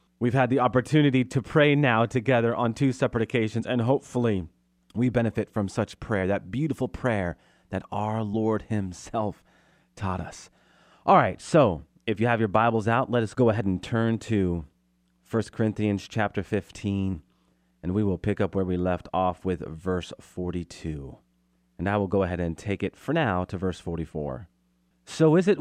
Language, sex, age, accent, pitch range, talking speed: English, male, 30-49, American, 90-140 Hz, 180 wpm